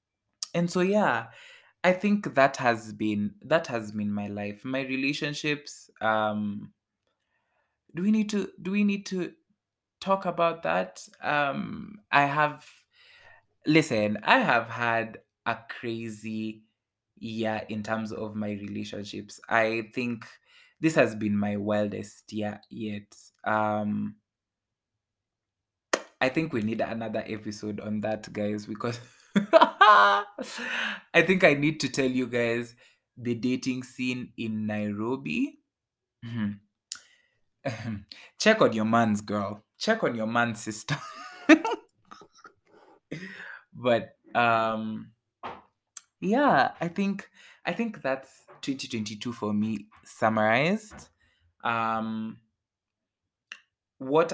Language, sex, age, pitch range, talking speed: English, male, 20-39, 105-150 Hz, 110 wpm